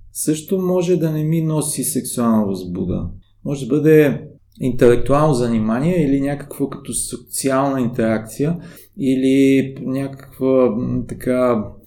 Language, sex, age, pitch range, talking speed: Bulgarian, male, 30-49, 110-145 Hz, 105 wpm